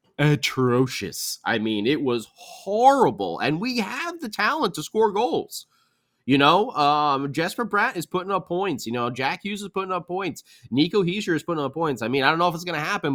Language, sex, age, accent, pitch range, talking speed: English, male, 30-49, American, 135-205 Hz, 215 wpm